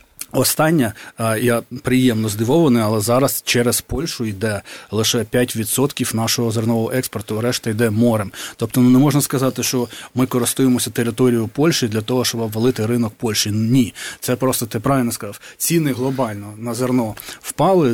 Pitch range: 115-130 Hz